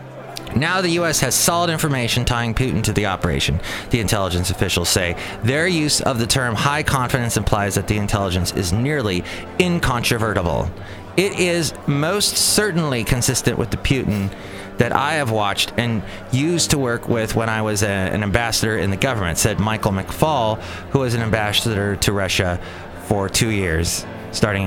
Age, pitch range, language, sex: 30-49, 100-135 Hz, English, male